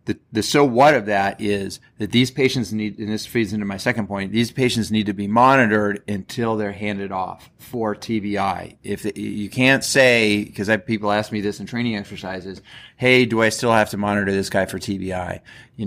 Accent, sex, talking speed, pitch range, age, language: American, male, 210 wpm, 100-120 Hz, 30-49, English